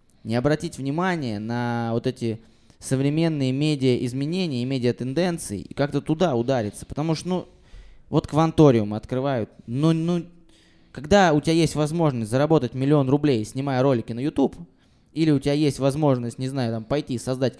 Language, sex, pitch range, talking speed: Russian, male, 120-155 Hz, 155 wpm